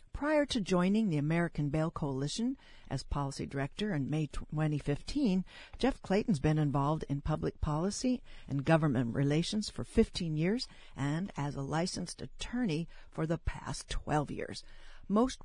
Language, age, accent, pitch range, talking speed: English, 60-79, American, 140-185 Hz, 145 wpm